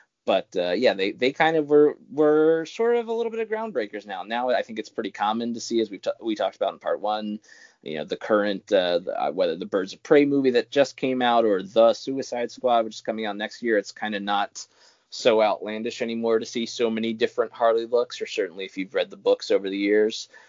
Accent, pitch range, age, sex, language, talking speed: American, 105-145 Hz, 20-39, male, English, 250 wpm